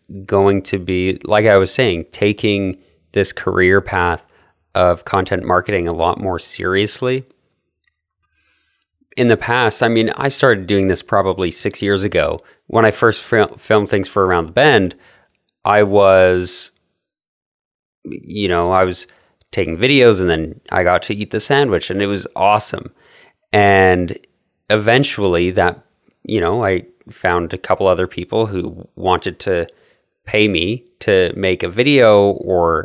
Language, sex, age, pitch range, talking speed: English, male, 30-49, 90-105 Hz, 150 wpm